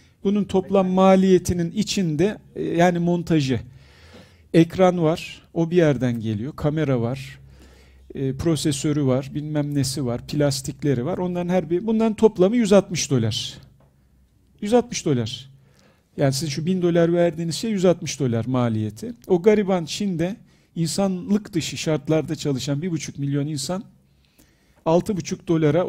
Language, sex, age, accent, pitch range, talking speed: Turkish, male, 50-69, native, 130-170 Hz, 125 wpm